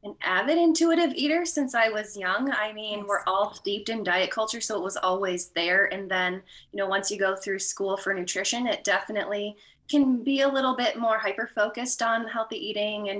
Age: 20-39